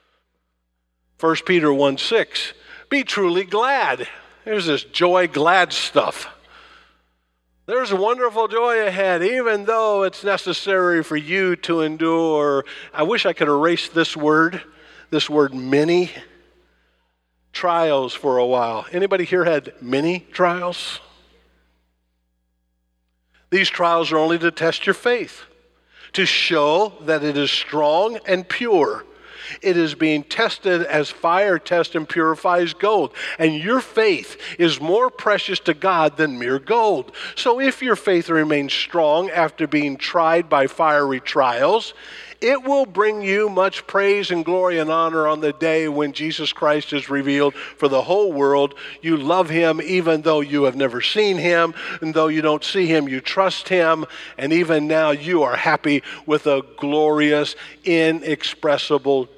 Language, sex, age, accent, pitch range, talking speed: English, male, 50-69, American, 145-180 Hz, 145 wpm